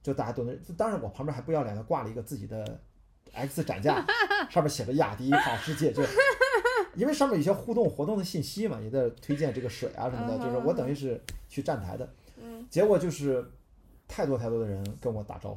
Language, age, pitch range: Chinese, 30-49, 105-145 Hz